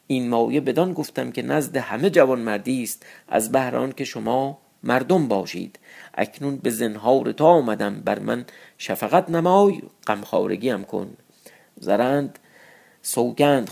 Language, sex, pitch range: Persian, male, 115-155 Hz